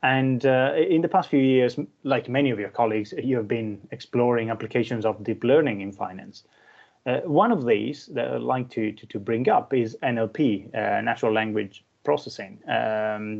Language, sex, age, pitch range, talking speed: English, male, 20-39, 105-125 Hz, 185 wpm